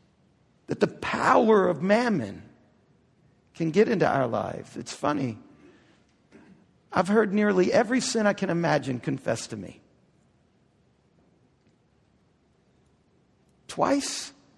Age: 50-69